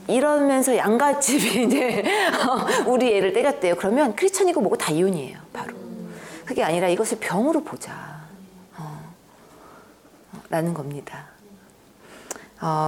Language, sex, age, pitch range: Korean, female, 40-59, 180-265 Hz